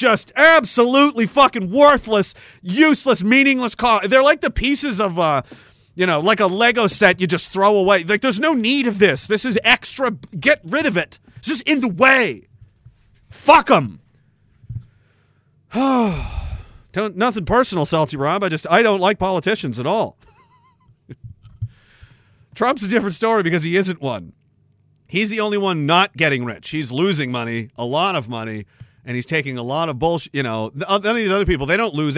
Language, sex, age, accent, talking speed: English, male, 40-59, American, 175 wpm